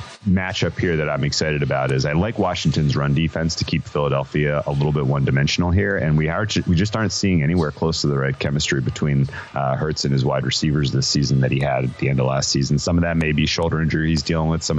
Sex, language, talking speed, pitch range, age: male, English, 250 wpm, 75-85 Hz, 30-49